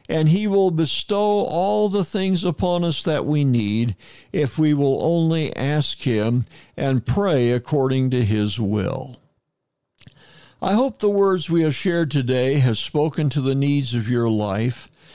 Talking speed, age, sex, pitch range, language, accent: 160 wpm, 60-79, male, 125-175 Hz, English, American